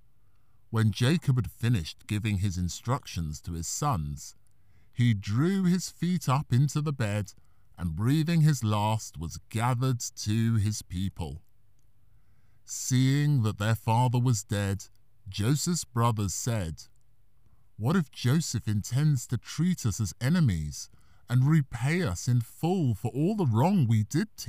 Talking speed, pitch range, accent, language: 140 wpm, 105-130 Hz, British, English